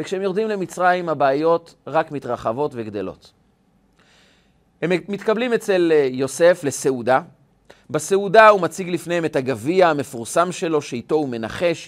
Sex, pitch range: male, 135-210 Hz